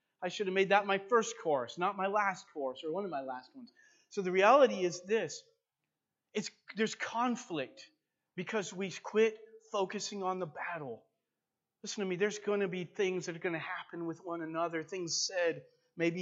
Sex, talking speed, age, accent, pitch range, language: male, 190 wpm, 30-49, American, 135-195 Hz, English